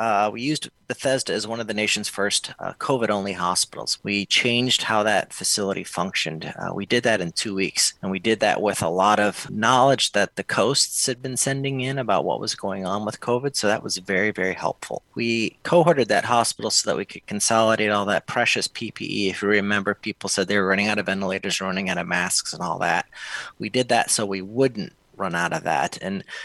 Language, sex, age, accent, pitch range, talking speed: English, male, 30-49, American, 100-120 Hz, 220 wpm